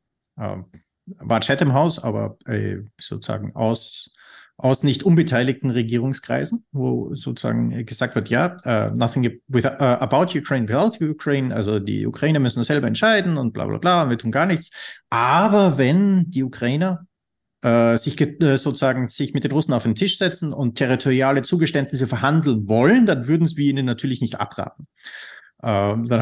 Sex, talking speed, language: male, 165 wpm, German